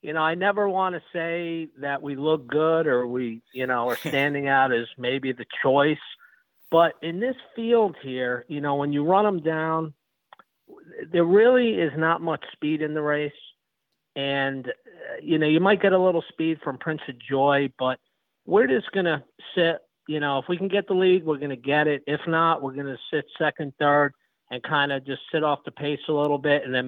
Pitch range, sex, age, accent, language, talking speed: 130-165 Hz, male, 50-69, American, English, 215 wpm